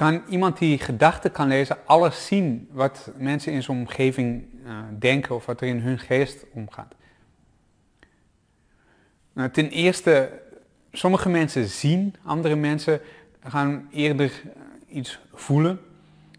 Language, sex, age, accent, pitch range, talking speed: Dutch, male, 30-49, Dutch, 130-155 Hz, 125 wpm